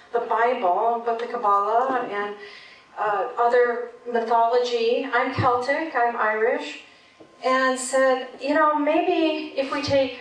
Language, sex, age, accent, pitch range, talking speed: English, female, 40-59, American, 220-280 Hz, 125 wpm